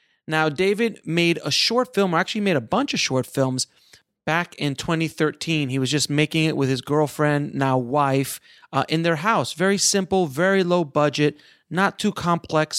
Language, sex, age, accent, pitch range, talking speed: English, male, 30-49, American, 135-180 Hz, 185 wpm